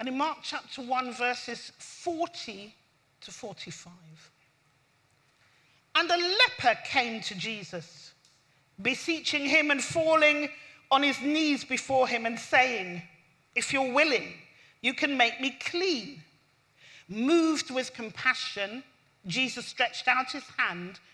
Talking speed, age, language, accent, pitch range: 120 wpm, 40-59, English, British, 195-295 Hz